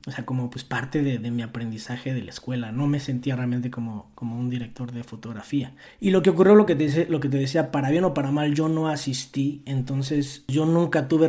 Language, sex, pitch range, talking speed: Spanish, male, 130-150 Hz, 240 wpm